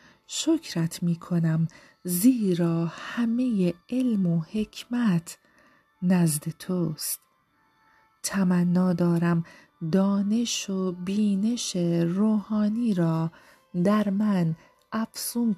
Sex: female